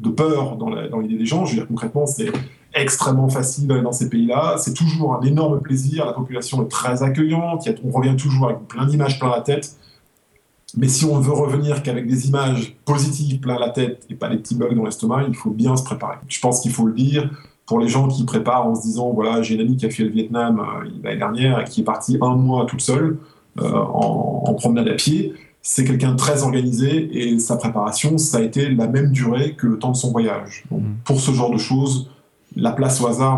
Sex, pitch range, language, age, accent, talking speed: male, 120-145 Hz, French, 20-39, French, 235 wpm